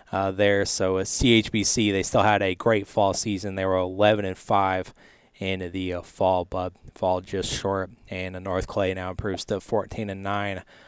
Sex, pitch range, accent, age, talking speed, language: male, 95-105 Hz, American, 20-39, 190 wpm, English